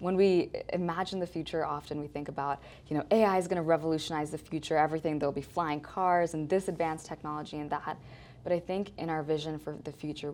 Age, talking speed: 20-39, 225 wpm